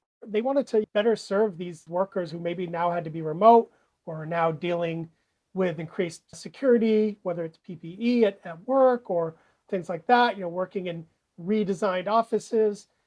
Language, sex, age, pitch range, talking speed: English, male, 40-59, 170-200 Hz, 170 wpm